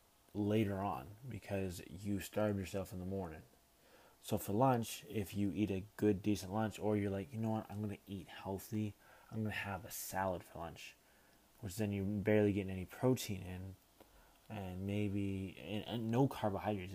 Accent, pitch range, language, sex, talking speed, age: American, 95-110 Hz, English, male, 185 wpm, 20-39